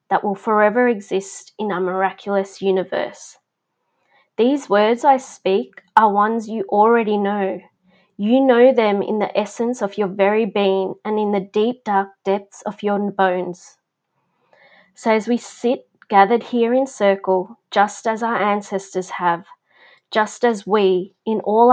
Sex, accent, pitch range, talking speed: female, Australian, 195-240 Hz, 150 wpm